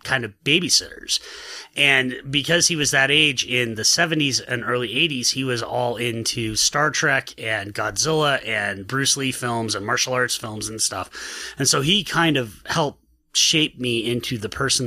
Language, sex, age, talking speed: English, male, 30-49, 180 wpm